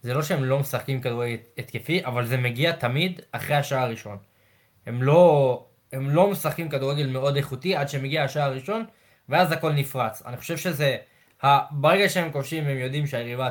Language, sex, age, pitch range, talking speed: Hebrew, male, 20-39, 135-170 Hz, 170 wpm